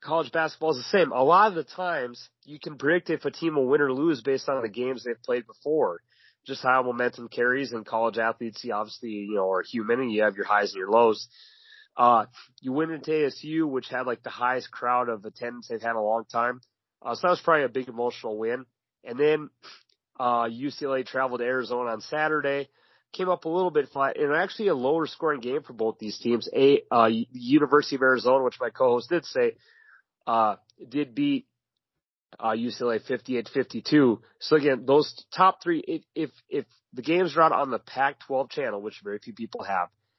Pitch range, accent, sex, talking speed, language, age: 120-165 Hz, American, male, 210 wpm, English, 30-49